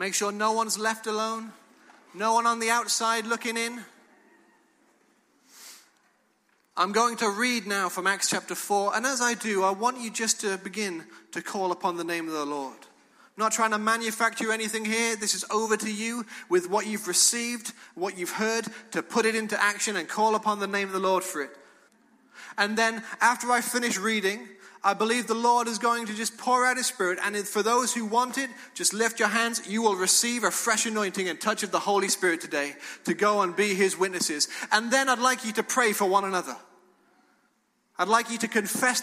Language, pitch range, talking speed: English, 195-230 Hz, 210 wpm